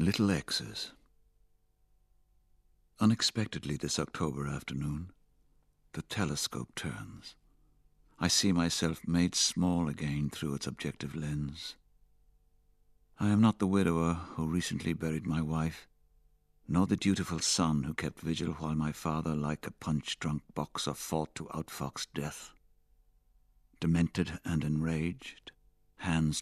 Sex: male